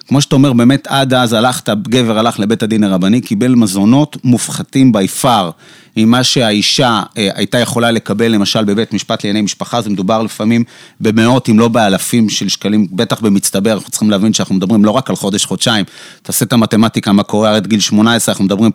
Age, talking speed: 30-49, 180 wpm